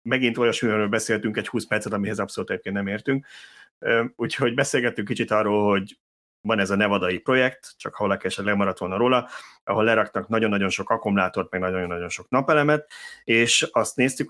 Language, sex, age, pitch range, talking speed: Hungarian, male, 30-49, 100-115 Hz, 170 wpm